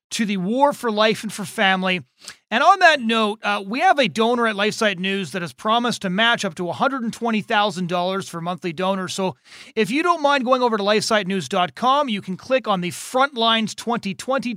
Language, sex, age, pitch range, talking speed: English, male, 30-49, 180-230 Hz, 200 wpm